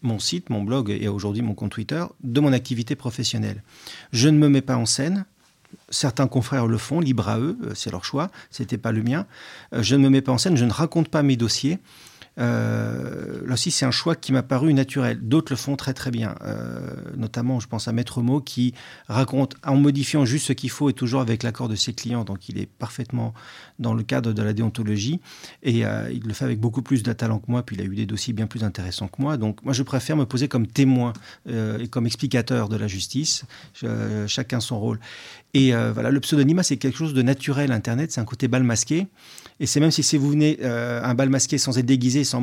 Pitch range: 115-140 Hz